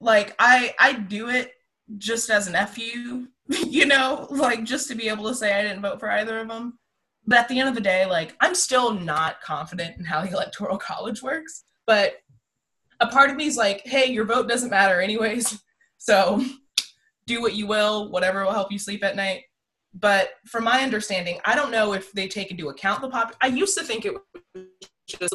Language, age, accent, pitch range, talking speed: English, 20-39, American, 170-240 Hz, 210 wpm